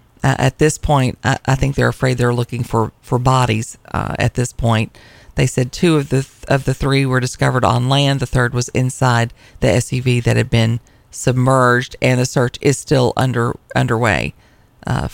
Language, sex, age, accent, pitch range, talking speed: English, female, 40-59, American, 115-135 Hz, 195 wpm